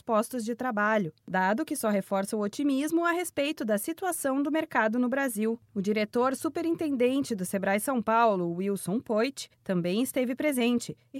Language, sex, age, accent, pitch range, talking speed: Portuguese, female, 20-39, Brazilian, 205-275 Hz, 155 wpm